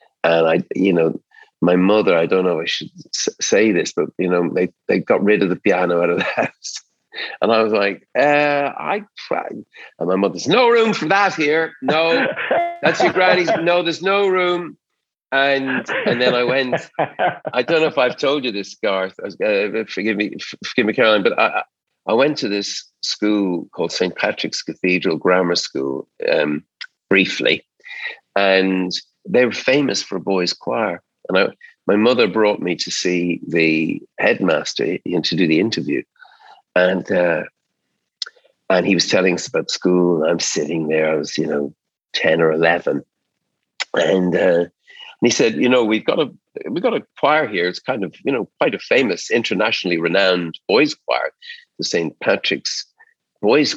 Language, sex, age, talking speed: English, male, 50-69, 180 wpm